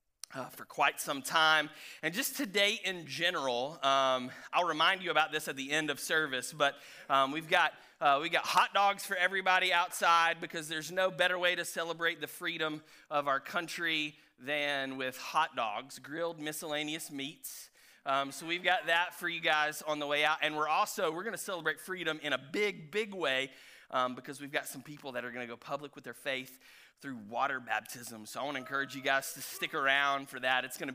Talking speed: 205 wpm